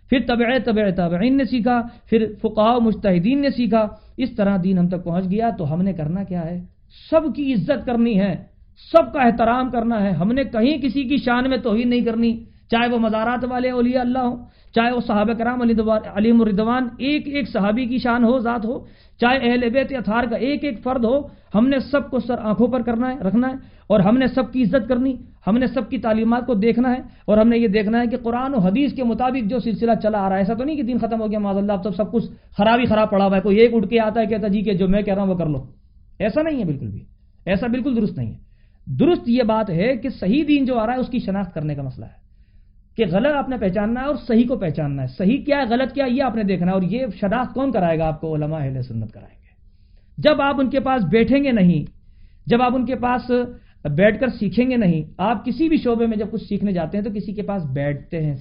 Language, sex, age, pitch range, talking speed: Urdu, male, 50-69, 195-250 Hz, 260 wpm